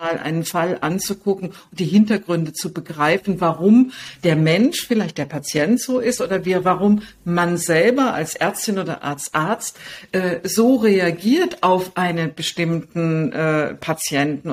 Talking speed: 140 wpm